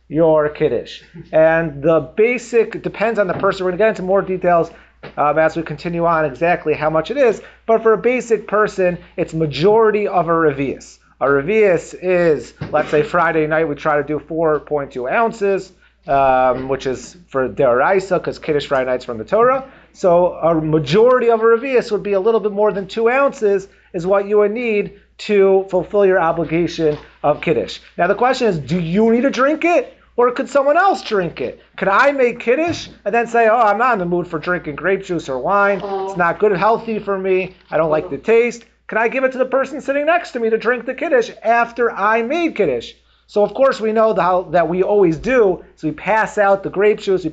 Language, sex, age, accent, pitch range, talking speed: English, male, 30-49, American, 165-230 Hz, 215 wpm